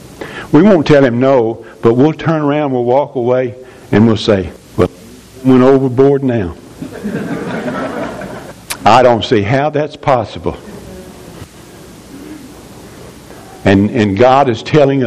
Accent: American